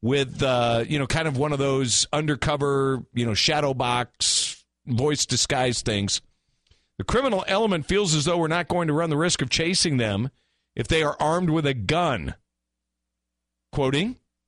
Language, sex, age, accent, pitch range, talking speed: English, male, 50-69, American, 115-180 Hz, 170 wpm